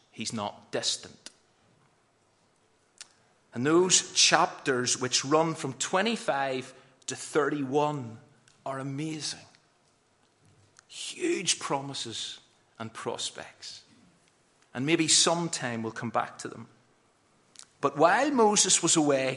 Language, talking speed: English, 95 wpm